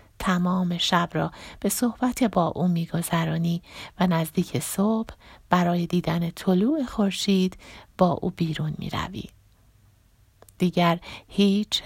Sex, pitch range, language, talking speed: female, 150-205 Hz, Persian, 105 wpm